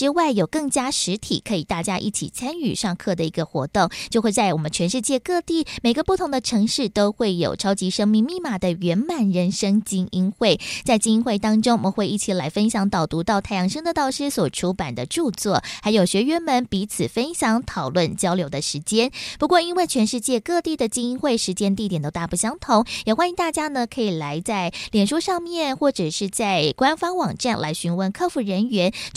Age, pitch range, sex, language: 20-39, 190-270 Hz, female, Chinese